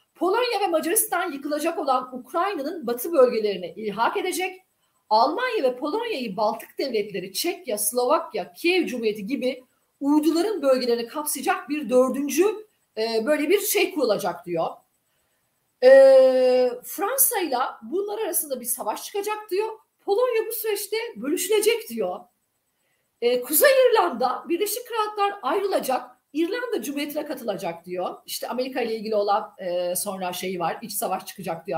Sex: female